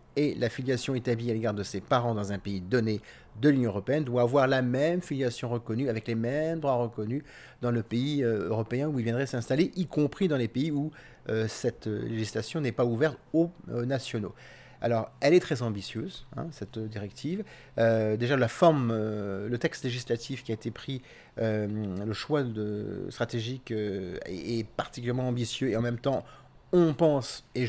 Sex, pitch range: male, 115-140 Hz